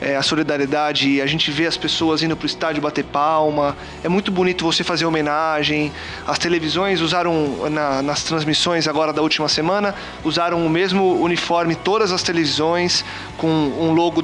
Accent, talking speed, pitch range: Brazilian, 160 wpm, 155-200 Hz